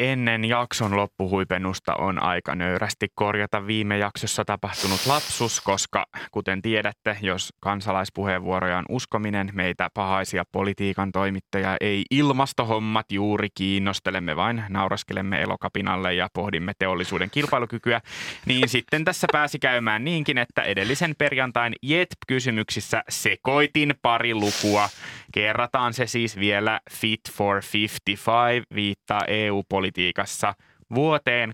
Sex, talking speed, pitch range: male, 110 wpm, 95-120 Hz